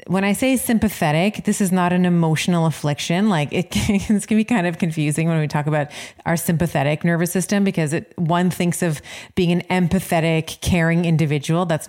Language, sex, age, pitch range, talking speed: English, female, 30-49, 155-185 Hz, 190 wpm